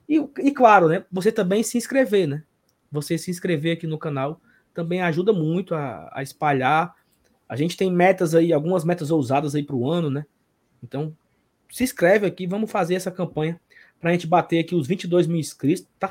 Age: 20-39